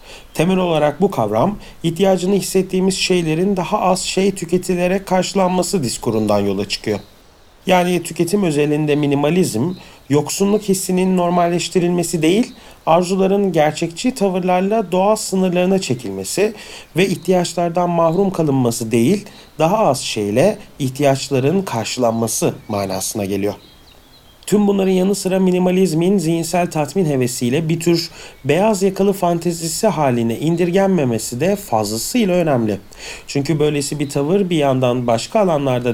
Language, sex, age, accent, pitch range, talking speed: Turkish, male, 40-59, native, 130-185 Hz, 110 wpm